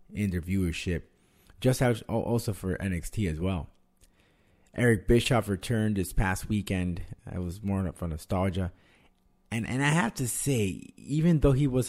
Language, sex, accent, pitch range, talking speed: English, male, American, 85-110 Hz, 160 wpm